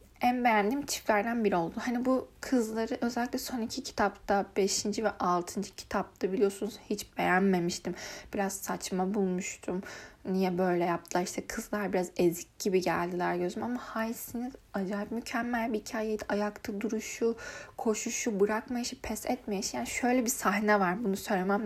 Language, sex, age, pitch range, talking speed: Turkish, female, 10-29, 195-235 Hz, 140 wpm